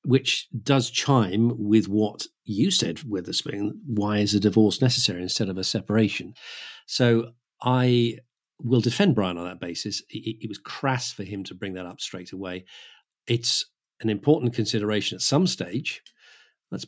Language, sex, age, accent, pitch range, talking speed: English, male, 50-69, British, 100-125 Hz, 165 wpm